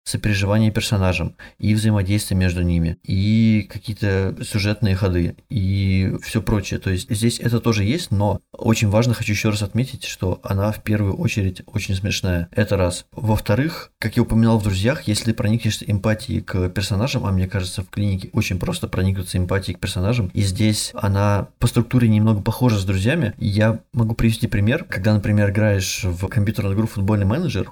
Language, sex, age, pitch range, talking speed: Russian, male, 20-39, 95-115 Hz, 170 wpm